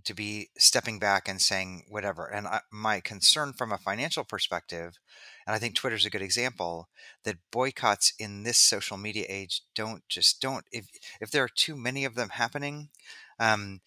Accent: American